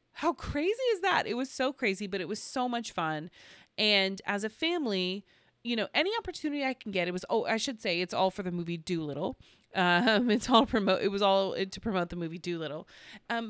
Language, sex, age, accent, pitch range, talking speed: English, female, 30-49, American, 165-220 Hz, 230 wpm